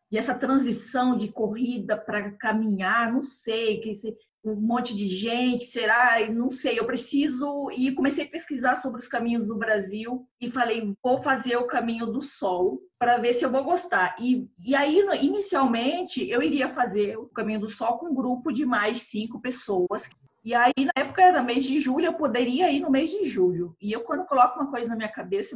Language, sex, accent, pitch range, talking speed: Portuguese, female, Brazilian, 215-265 Hz, 200 wpm